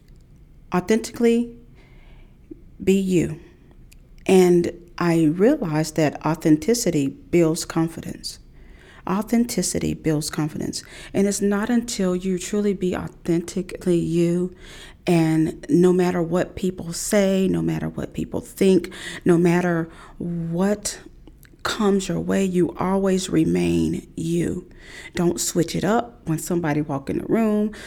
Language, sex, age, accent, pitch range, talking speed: English, female, 40-59, American, 160-190 Hz, 115 wpm